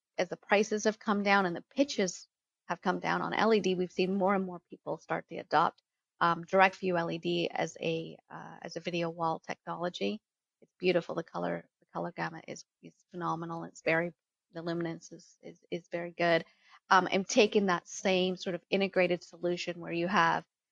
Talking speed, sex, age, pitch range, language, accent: 190 wpm, female, 30-49, 170-190 Hz, English, American